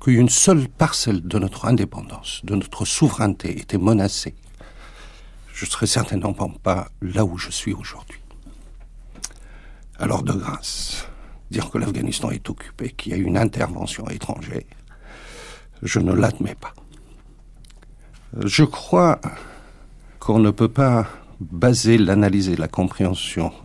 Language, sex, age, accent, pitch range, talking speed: French, male, 60-79, French, 95-120 Hz, 130 wpm